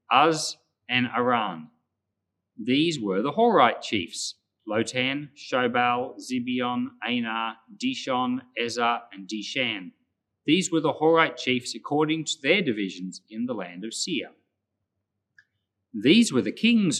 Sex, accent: male, Australian